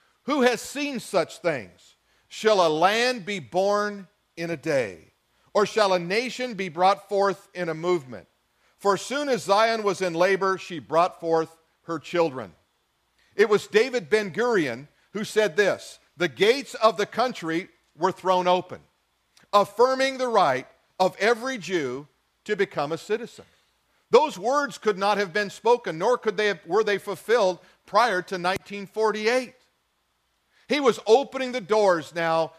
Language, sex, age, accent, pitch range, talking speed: English, male, 50-69, American, 175-235 Hz, 155 wpm